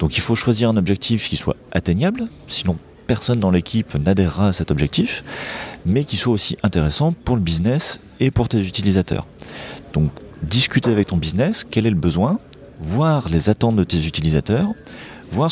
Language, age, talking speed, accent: French, 40-59, 175 wpm, French